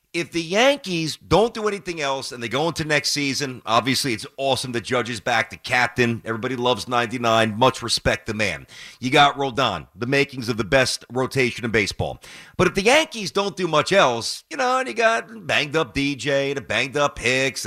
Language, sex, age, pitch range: English, male, 40-59, 130-195 Hz